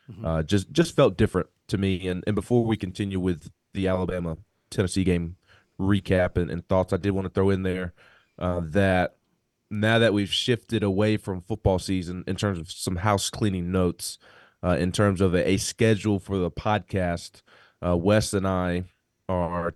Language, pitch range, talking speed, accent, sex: English, 90-100 Hz, 175 wpm, American, male